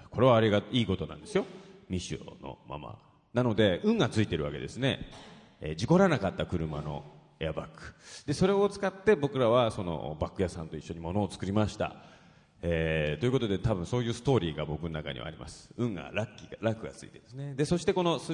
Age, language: 30-49, Japanese